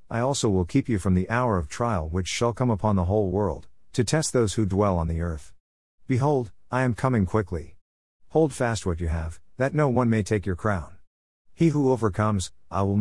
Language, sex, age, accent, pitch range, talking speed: English, male, 50-69, American, 90-120 Hz, 215 wpm